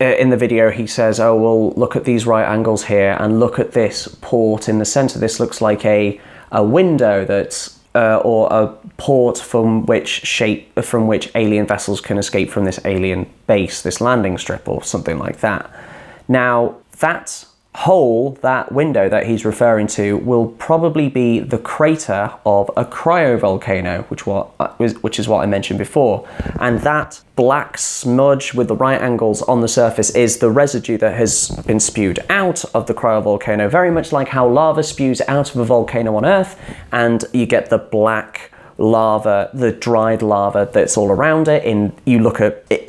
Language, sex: English, male